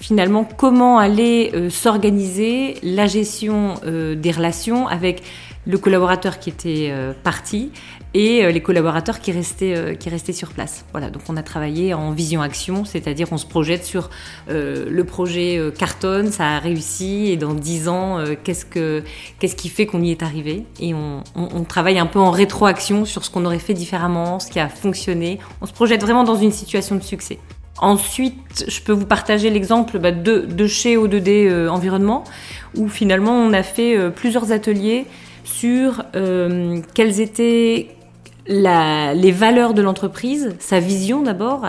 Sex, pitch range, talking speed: female, 170-215 Hz, 175 wpm